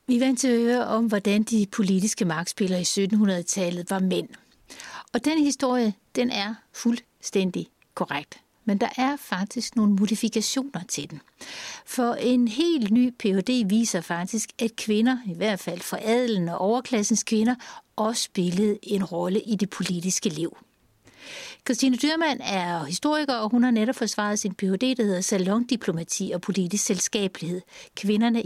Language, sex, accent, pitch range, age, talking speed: Danish, female, native, 195-245 Hz, 60-79, 150 wpm